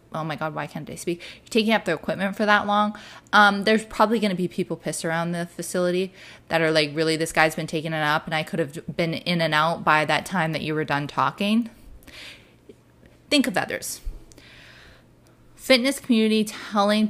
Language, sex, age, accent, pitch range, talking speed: English, female, 20-39, American, 165-210 Hz, 200 wpm